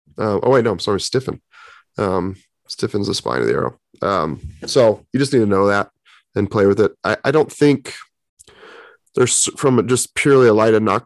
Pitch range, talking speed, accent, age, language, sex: 100-120 Hz, 210 wpm, American, 30-49, English, male